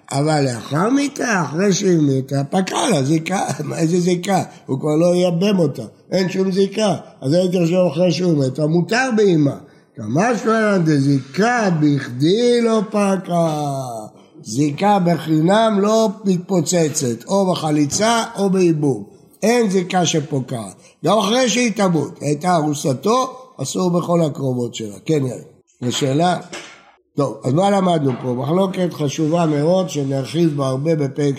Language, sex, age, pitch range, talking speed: Hebrew, male, 60-79, 145-195 Hz, 130 wpm